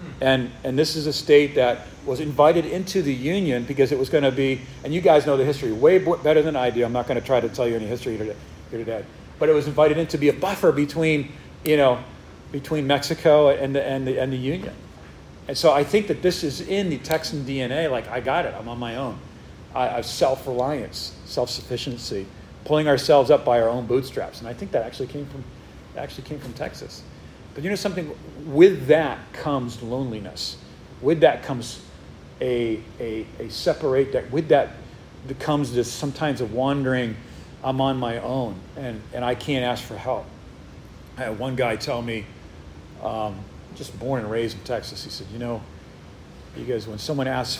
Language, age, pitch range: English, 40-59, 115-145 Hz